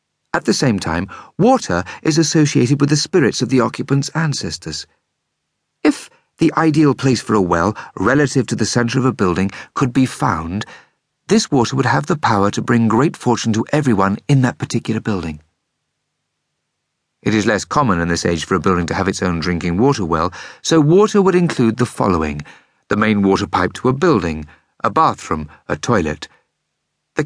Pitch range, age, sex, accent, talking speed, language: 100-145 Hz, 50-69, male, British, 180 wpm, English